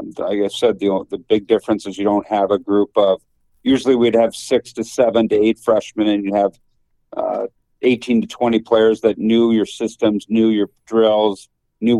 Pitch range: 100-115 Hz